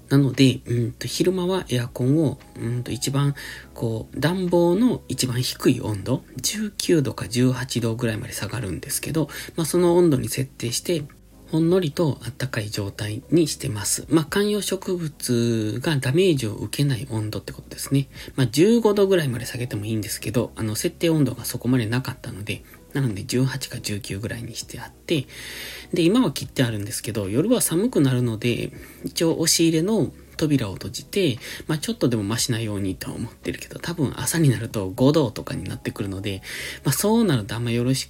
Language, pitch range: Japanese, 115-160 Hz